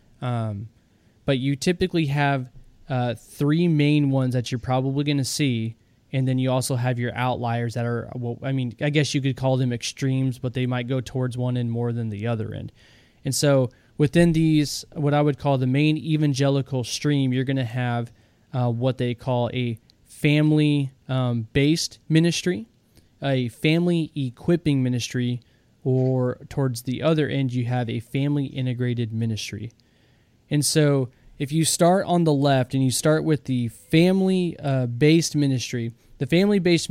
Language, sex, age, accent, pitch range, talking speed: English, male, 20-39, American, 120-145 Hz, 160 wpm